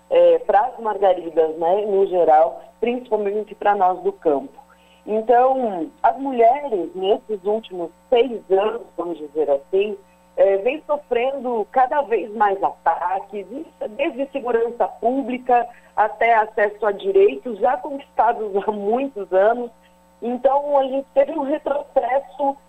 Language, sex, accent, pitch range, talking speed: Portuguese, female, Brazilian, 195-270 Hz, 120 wpm